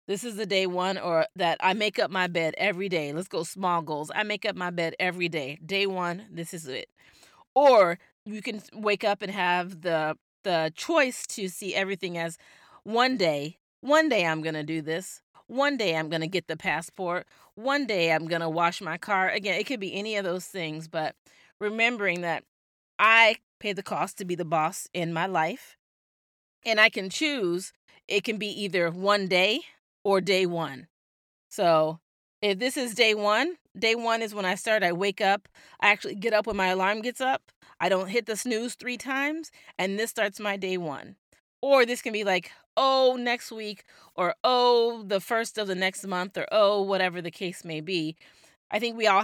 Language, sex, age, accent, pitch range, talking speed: English, female, 30-49, American, 170-215 Hz, 205 wpm